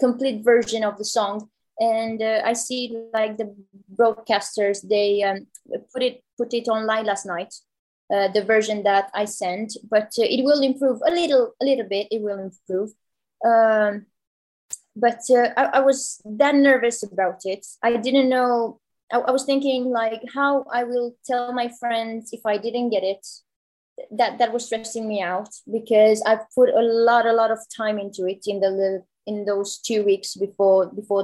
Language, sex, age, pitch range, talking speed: English, female, 20-39, 205-245 Hz, 185 wpm